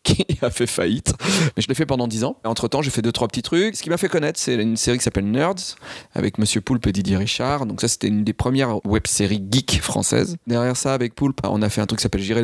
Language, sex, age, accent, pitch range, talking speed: French, male, 30-49, French, 105-125 Hz, 275 wpm